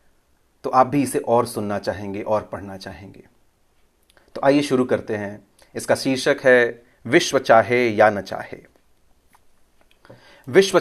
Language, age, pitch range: Hindi, 30-49, 110-140 Hz